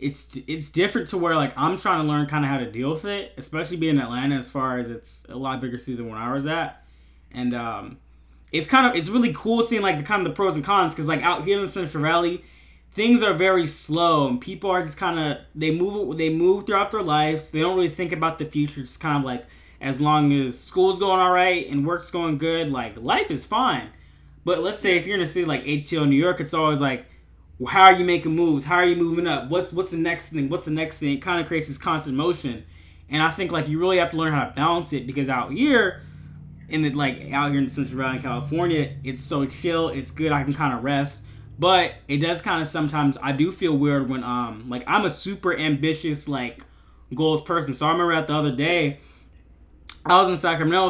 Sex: male